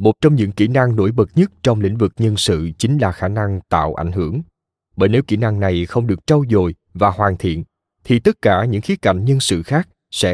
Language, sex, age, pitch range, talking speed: Vietnamese, male, 20-39, 95-130 Hz, 245 wpm